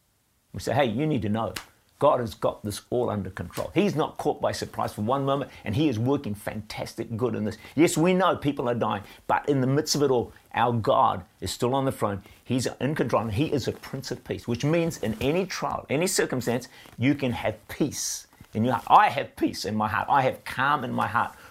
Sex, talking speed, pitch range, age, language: male, 240 wpm, 105-145 Hz, 50-69, English